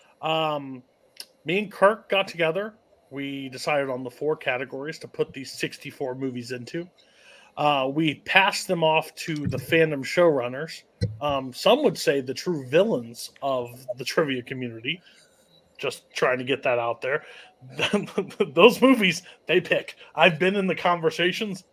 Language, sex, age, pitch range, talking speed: English, male, 30-49, 140-185 Hz, 150 wpm